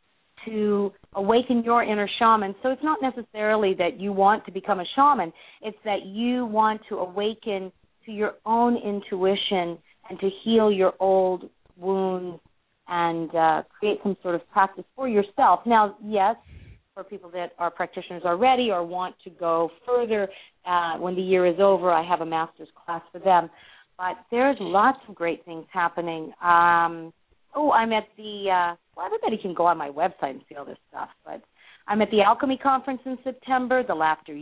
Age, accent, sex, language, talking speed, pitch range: 40-59, American, female, English, 180 wpm, 180-235 Hz